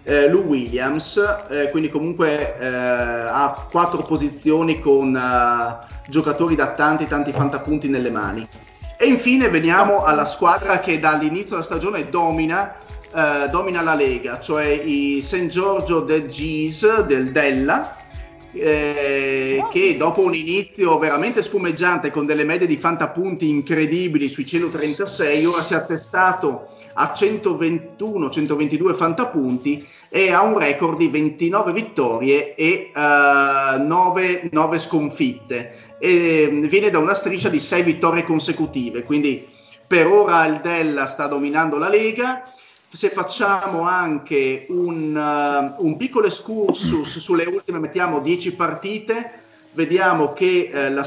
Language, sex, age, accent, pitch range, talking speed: Italian, male, 30-49, native, 145-180 Hz, 130 wpm